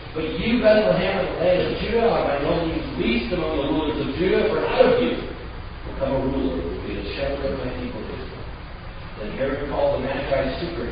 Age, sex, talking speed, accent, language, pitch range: 40-59, male, 215 wpm, American, English, 95-135 Hz